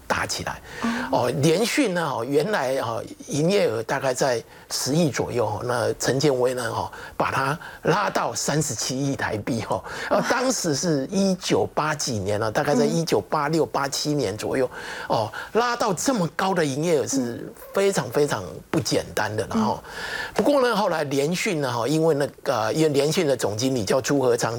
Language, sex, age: Chinese, male, 50-69